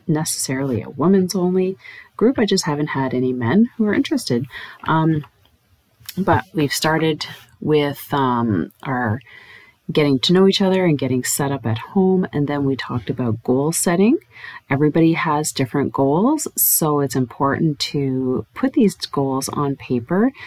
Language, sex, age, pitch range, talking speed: English, female, 30-49, 130-180 Hz, 150 wpm